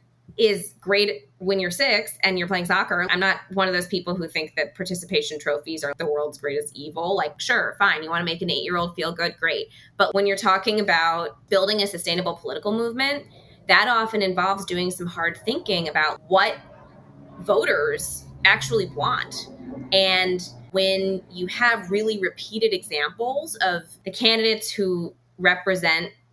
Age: 20-39